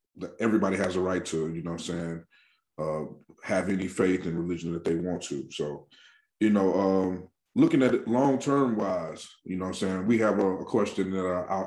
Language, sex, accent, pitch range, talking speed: English, male, American, 90-105 Hz, 225 wpm